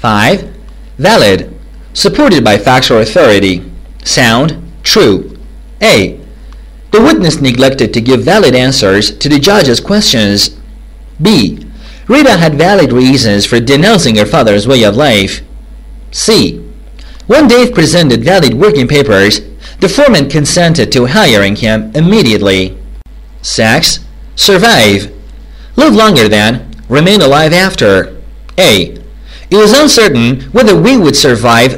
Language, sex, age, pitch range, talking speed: English, male, 40-59, 105-175 Hz, 115 wpm